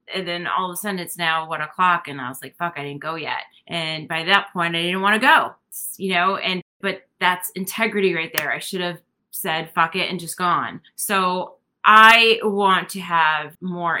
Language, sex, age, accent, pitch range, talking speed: English, female, 30-49, American, 165-190 Hz, 220 wpm